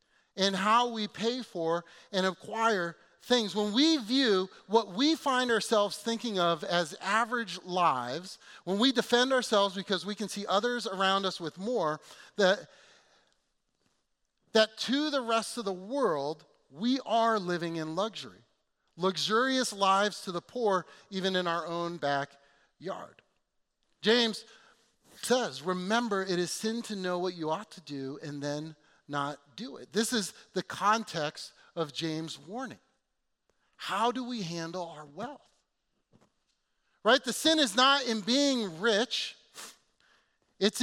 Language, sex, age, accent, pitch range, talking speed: English, male, 40-59, American, 175-230 Hz, 140 wpm